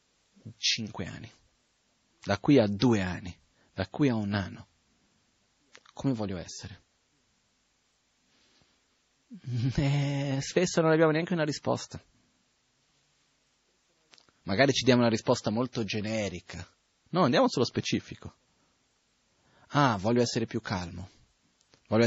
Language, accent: Italian, native